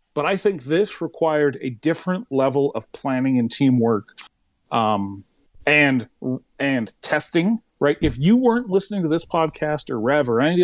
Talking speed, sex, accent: 170 wpm, male, American